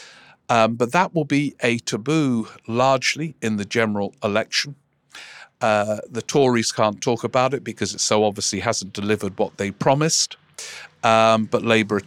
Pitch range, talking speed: 105-130 Hz, 160 wpm